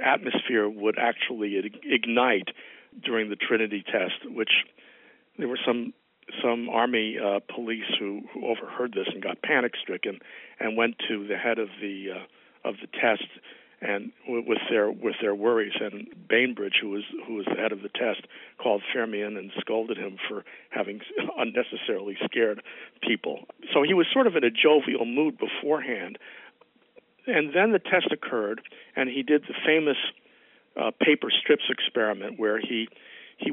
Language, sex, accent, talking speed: English, male, American, 165 wpm